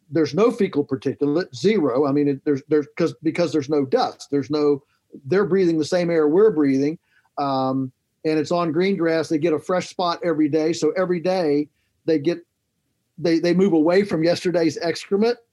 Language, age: English, 50-69